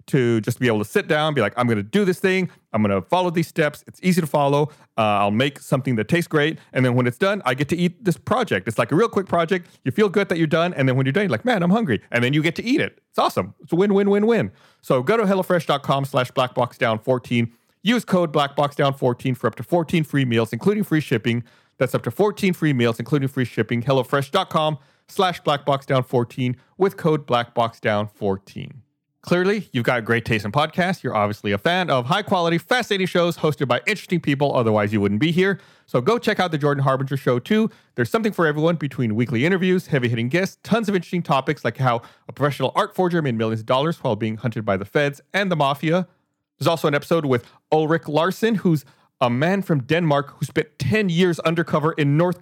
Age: 40-59